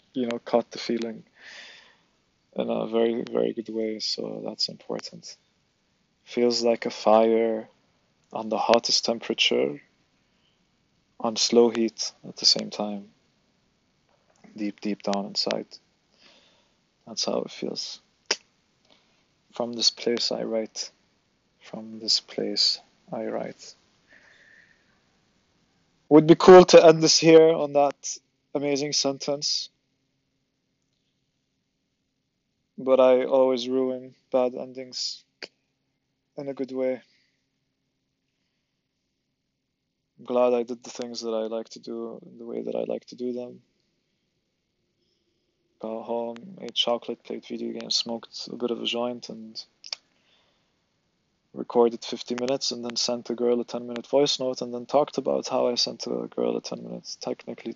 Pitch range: 115-130 Hz